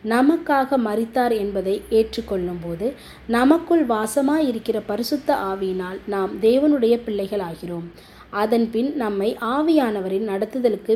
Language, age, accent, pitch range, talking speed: Tamil, 20-39, native, 195-275 Hz, 105 wpm